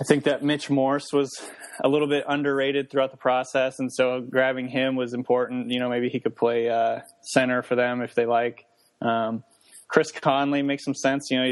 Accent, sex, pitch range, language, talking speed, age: American, male, 115-130 Hz, English, 210 wpm, 20-39